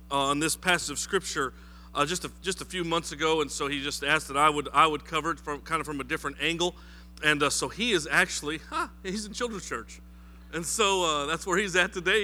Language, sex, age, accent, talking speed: English, male, 40-59, American, 250 wpm